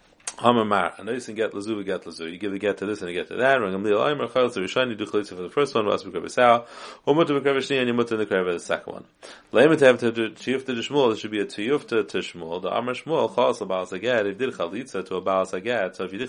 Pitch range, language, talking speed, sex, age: 95-115 Hz, English, 285 wpm, male, 30-49